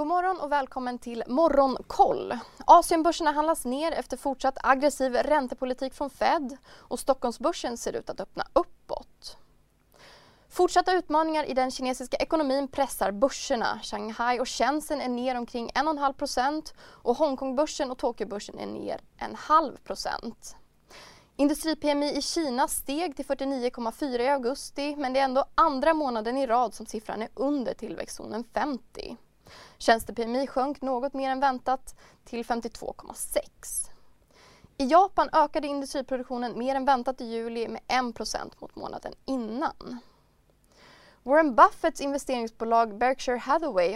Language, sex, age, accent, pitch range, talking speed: Swedish, female, 20-39, native, 240-295 Hz, 130 wpm